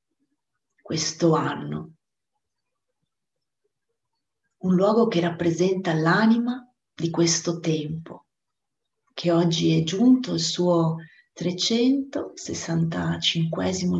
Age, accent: 40-59, native